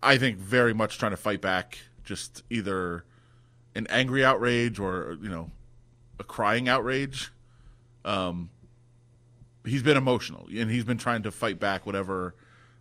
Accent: American